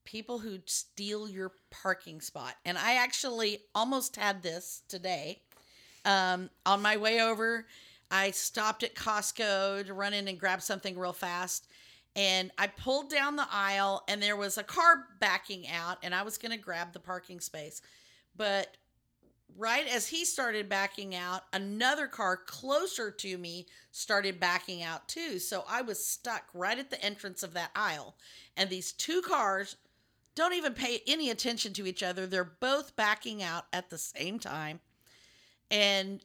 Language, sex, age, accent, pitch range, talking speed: English, female, 40-59, American, 185-245 Hz, 165 wpm